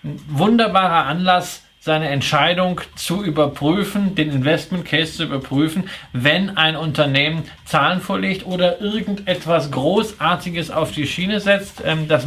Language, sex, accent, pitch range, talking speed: German, male, German, 155-180 Hz, 125 wpm